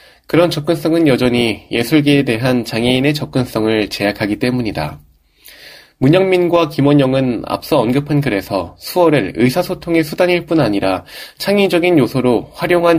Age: 20-39